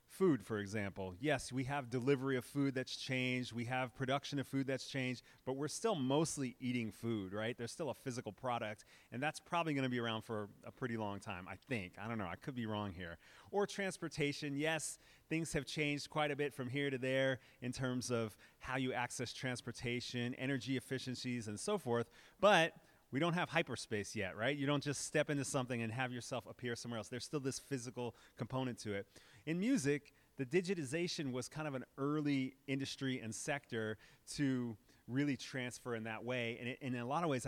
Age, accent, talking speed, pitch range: 30-49, American, 205 wpm, 120-145 Hz